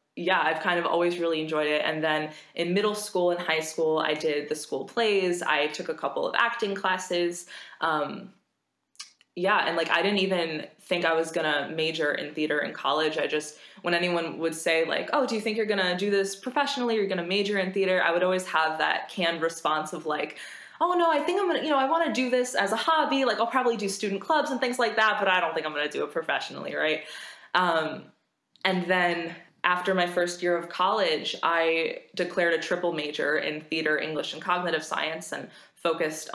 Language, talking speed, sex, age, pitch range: English, 230 wpm, female, 20-39, 155-190 Hz